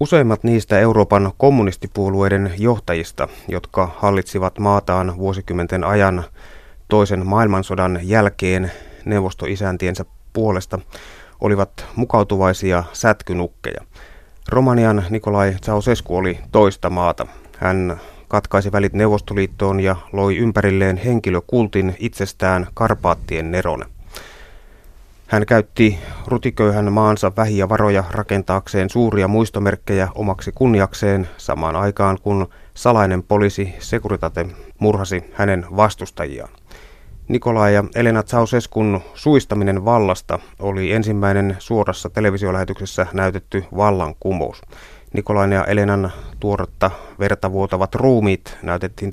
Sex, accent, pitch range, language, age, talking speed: male, native, 95-105 Hz, Finnish, 30-49, 90 wpm